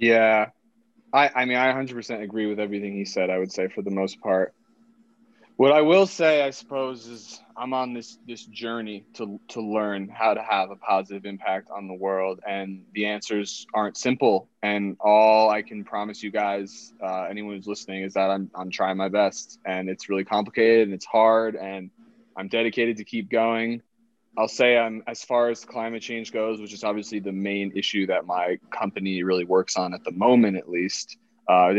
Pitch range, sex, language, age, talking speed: 100-115 Hz, male, English, 20-39, 200 wpm